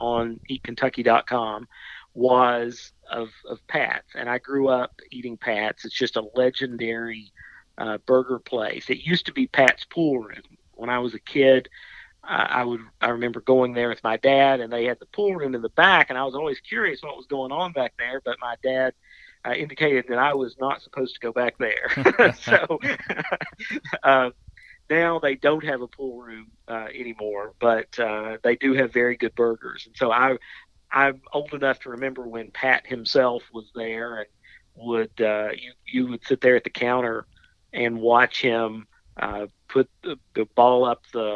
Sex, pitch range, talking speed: male, 115-130 Hz, 185 wpm